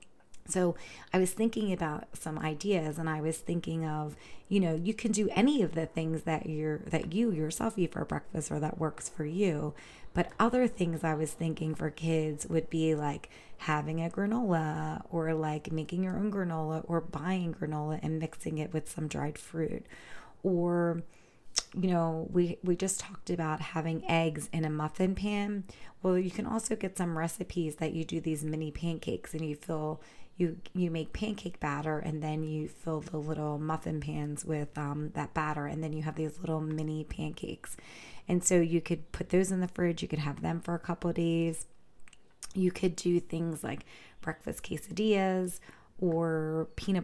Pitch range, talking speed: 155-180 Hz, 185 wpm